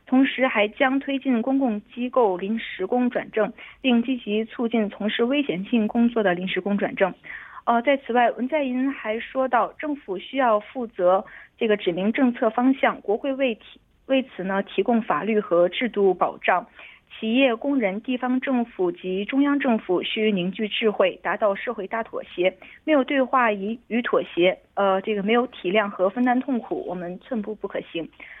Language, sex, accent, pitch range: Korean, female, Chinese, 200-255 Hz